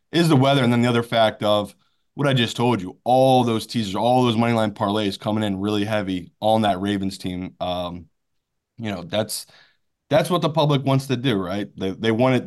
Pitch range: 100-130 Hz